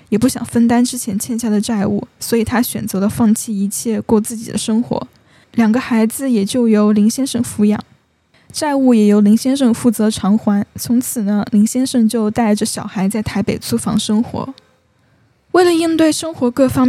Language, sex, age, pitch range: Chinese, female, 10-29, 215-255 Hz